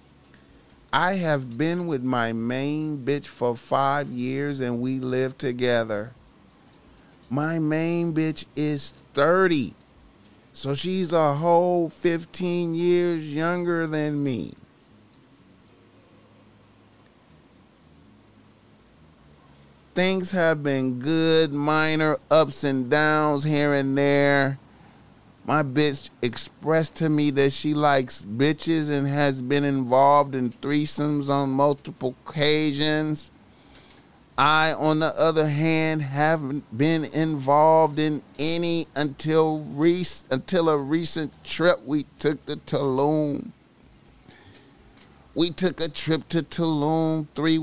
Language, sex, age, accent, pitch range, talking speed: English, male, 30-49, American, 130-160 Hz, 105 wpm